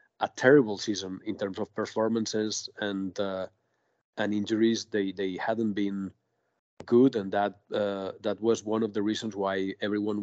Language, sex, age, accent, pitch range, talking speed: English, male, 40-59, Spanish, 100-115 Hz, 160 wpm